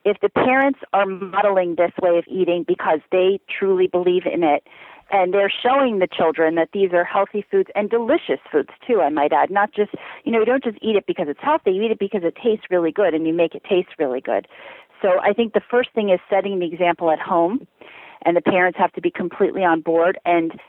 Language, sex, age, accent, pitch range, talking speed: English, female, 40-59, American, 170-205 Hz, 235 wpm